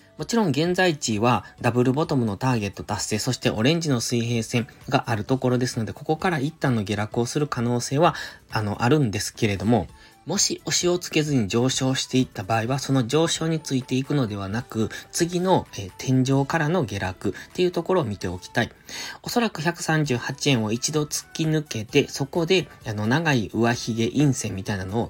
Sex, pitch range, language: male, 110-155 Hz, Japanese